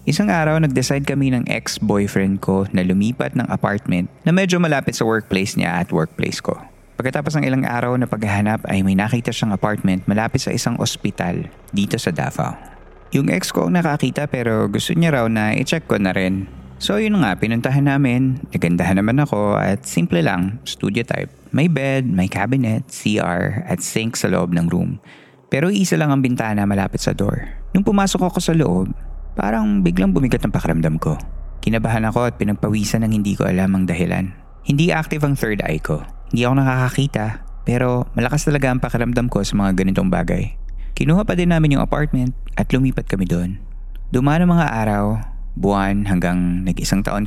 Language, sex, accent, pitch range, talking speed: Filipino, male, native, 95-140 Hz, 180 wpm